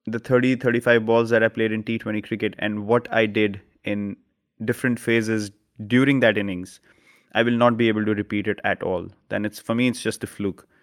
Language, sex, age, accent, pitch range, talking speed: English, male, 30-49, Indian, 110-125 Hz, 205 wpm